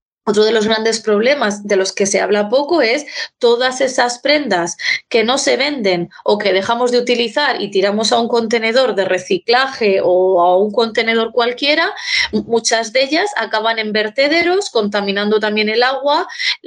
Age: 20-39